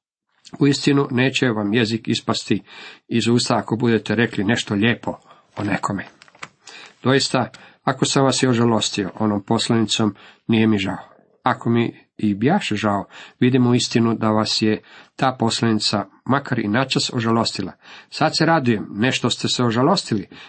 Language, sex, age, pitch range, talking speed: Croatian, male, 50-69, 110-135 Hz, 145 wpm